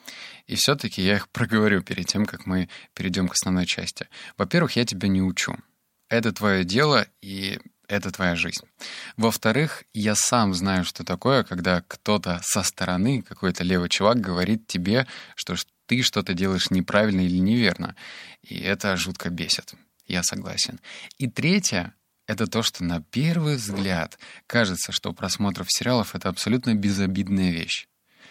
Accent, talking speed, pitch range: native, 145 wpm, 90-110 Hz